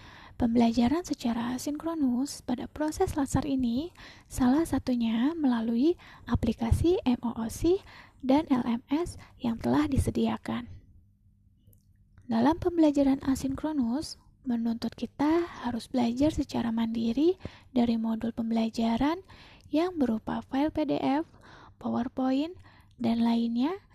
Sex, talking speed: female, 90 wpm